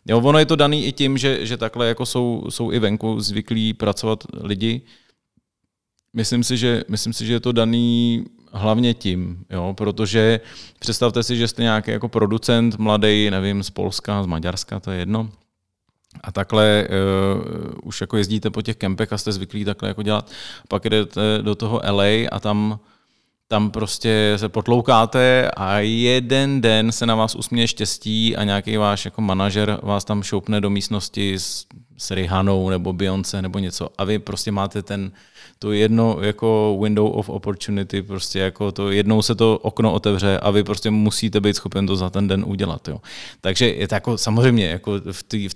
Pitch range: 100-115 Hz